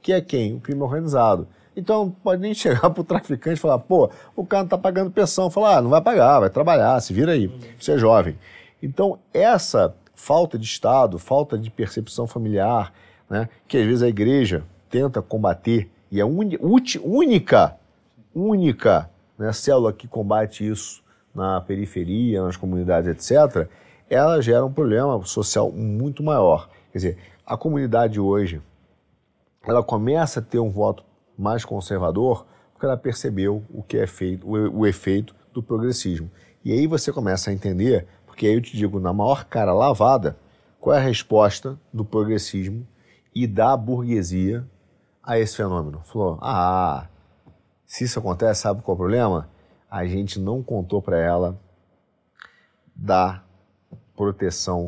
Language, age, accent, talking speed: Portuguese, 40-59, Brazilian, 155 wpm